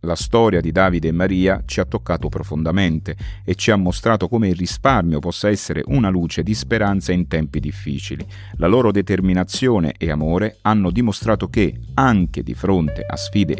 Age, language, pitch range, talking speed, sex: 40-59, Italian, 80-105 Hz, 170 wpm, male